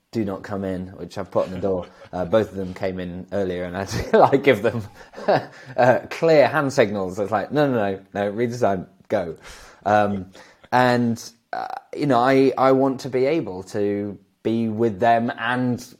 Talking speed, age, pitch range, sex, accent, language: 190 wpm, 20-39, 90-110 Hz, male, British, English